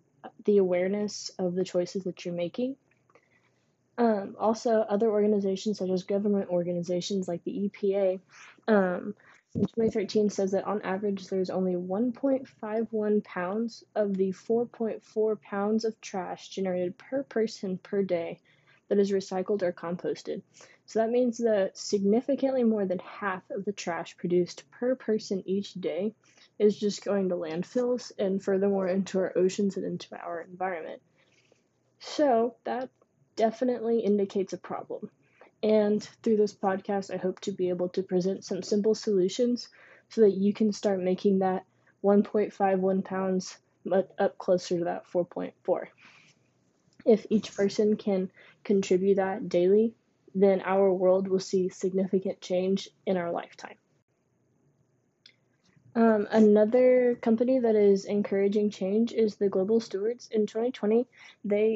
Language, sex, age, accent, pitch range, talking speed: English, female, 20-39, American, 190-220 Hz, 135 wpm